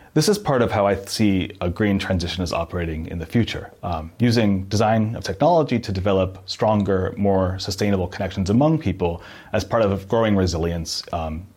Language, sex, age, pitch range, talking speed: English, male, 30-49, 90-115 Hz, 175 wpm